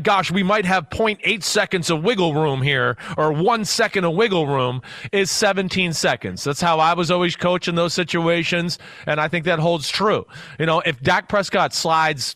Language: English